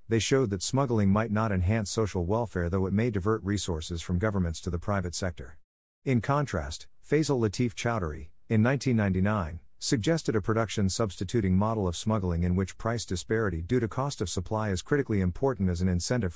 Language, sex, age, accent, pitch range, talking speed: English, male, 50-69, American, 90-115 Hz, 180 wpm